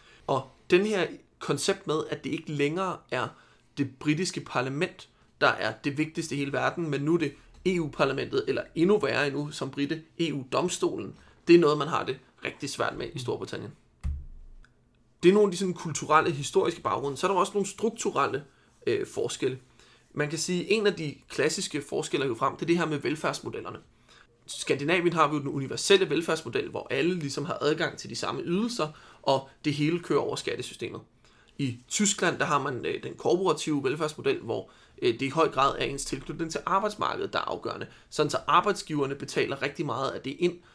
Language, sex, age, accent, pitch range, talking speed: Danish, male, 30-49, native, 140-185 Hz, 190 wpm